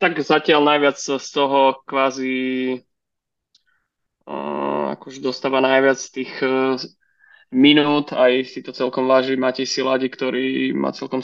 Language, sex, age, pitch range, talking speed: Slovak, male, 20-39, 130-140 Hz, 125 wpm